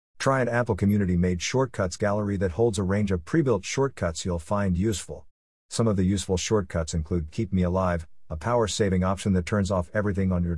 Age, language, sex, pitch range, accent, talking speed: 50-69, English, male, 90-115 Hz, American, 195 wpm